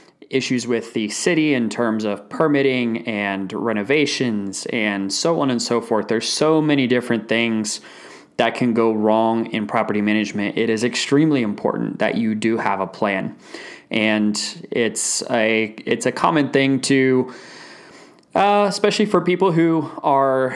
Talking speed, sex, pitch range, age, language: 150 wpm, male, 110-130 Hz, 20-39, English